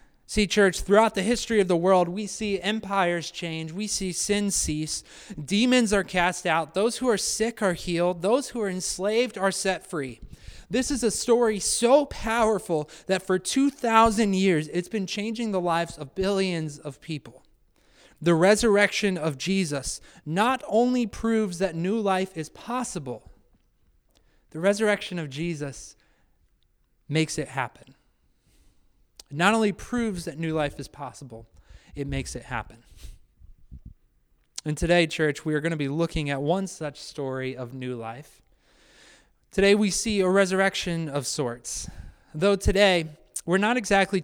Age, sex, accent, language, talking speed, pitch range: 30-49, male, American, English, 150 wpm, 145-200 Hz